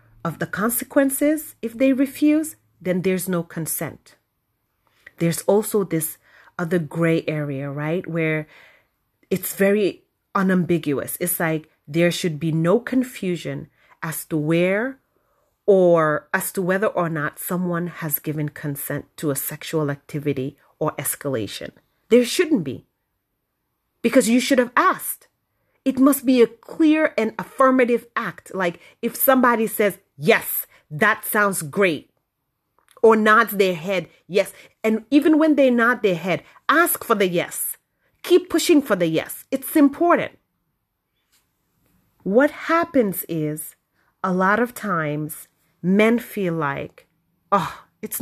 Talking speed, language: 130 wpm, English